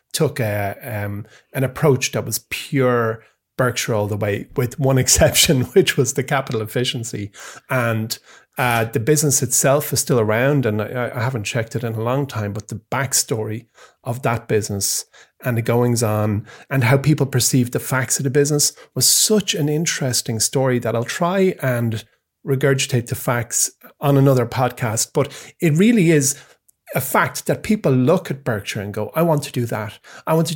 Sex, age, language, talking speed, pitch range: male, 30-49, English, 185 wpm, 115-140 Hz